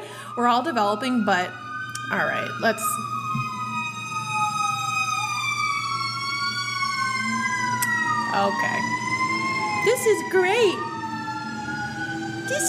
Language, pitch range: English, 185-260 Hz